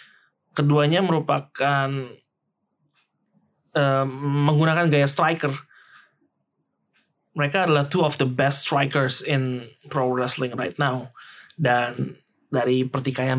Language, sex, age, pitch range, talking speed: Indonesian, male, 20-39, 130-180 Hz, 95 wpm